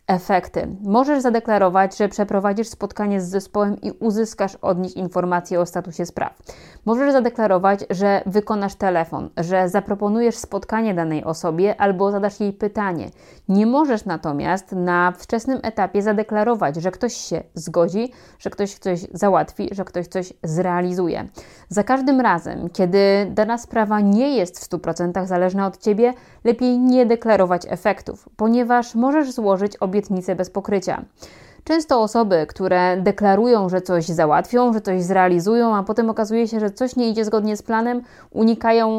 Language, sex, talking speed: Polish, female, 145 wpm